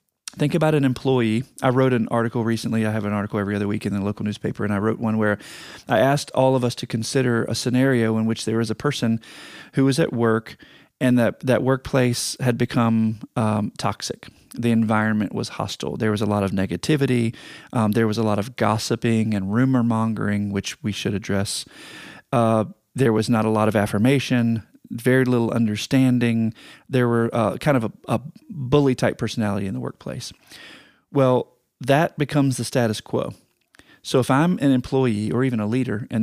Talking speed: 190 wpm